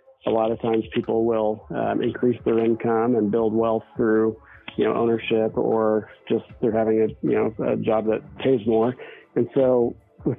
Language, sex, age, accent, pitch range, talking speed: English, male, 40-59, American, 110-125 Hz, 185 wpm